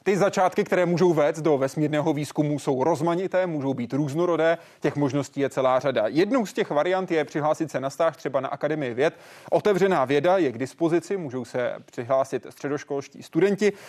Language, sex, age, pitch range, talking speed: Czech, male, 30-49, 135-180 Hz, 175 wpm